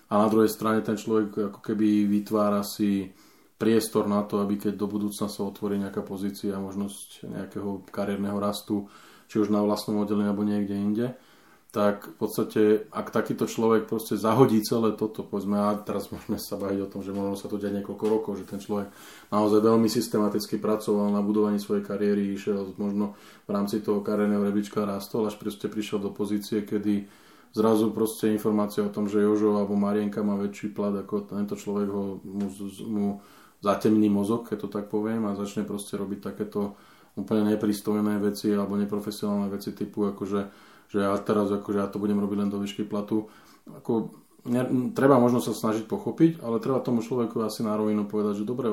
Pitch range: 100-110 Hz